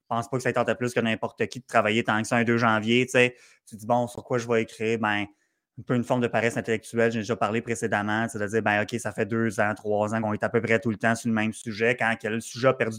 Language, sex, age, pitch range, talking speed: French, male, 20-39, 110-125 Hz, 335 wpm